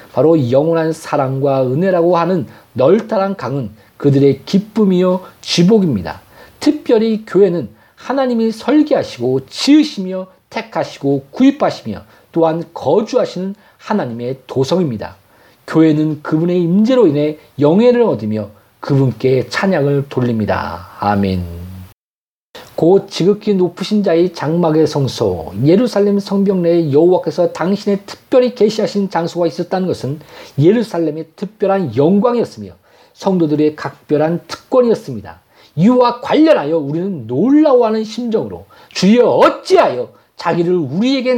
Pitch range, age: 140-210 Hz, 40-59